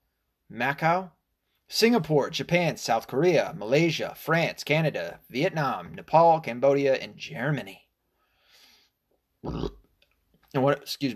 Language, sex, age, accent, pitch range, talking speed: English, male, 30-49, American, 125-185 Hz, 75 wpm